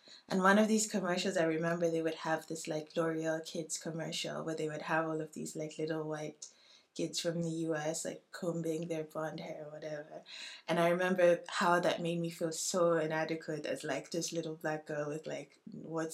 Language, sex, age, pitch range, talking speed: English, female, 20-39, 155-175 Hz, 205 wpm